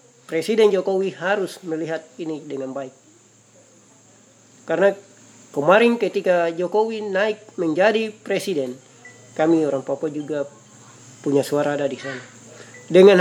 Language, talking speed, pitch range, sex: Indonesian, 110 wpm, 140-195 Hz, male